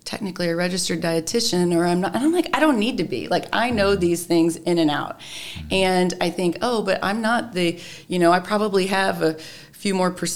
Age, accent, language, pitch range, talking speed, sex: 30-49, American, English, 160-185 Hz, 225 wpm, female